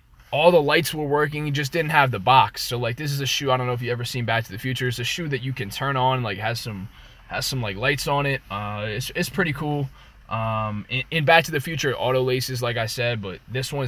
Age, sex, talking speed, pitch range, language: 20-39, male, 275 wpm, 120-150 Hz, English